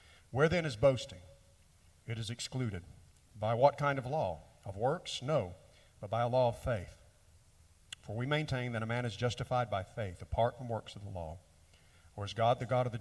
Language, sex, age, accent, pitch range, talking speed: English, male, 50-69, American, 95-120 Hz, 205 wpm